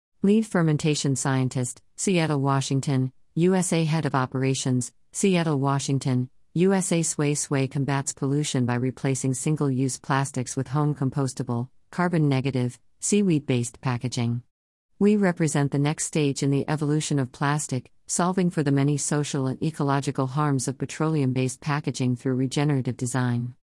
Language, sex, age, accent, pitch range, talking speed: English, female, 40-59, American, 130-155 Hz, 135 wpm